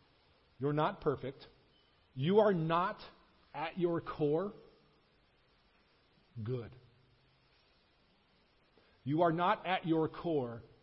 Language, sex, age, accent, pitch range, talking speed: English, male, 50-69, American, 120-165 Hz, 90 wpm